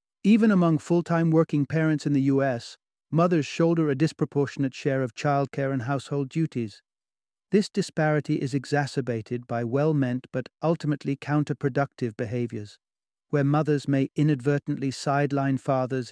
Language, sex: English, male